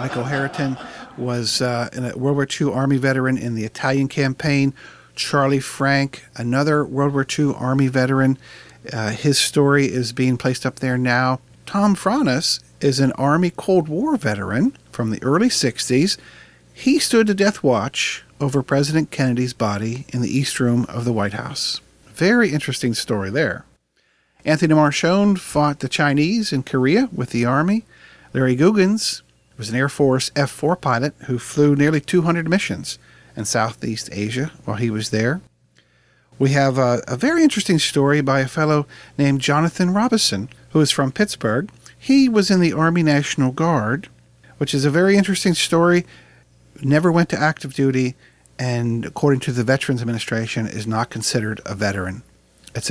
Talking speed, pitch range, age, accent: 160 wpm, 120-155 Hz, 50-69, American